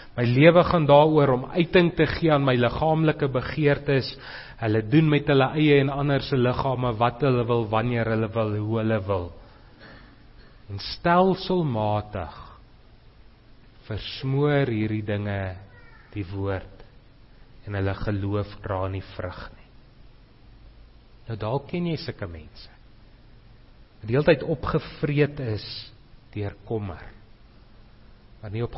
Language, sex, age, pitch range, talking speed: English, male, 30-49, 110-140 Hz, 125 wpm